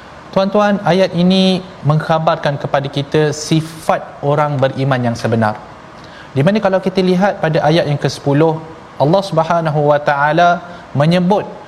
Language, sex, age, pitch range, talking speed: Malayalam, male, 30-49, 150-190 Hz, 130 wpm